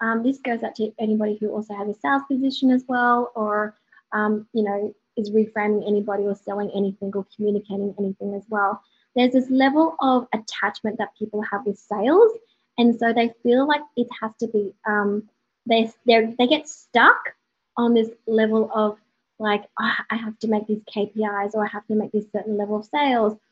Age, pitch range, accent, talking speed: 20-39, 215-245 Hz, Australian, 190 wpm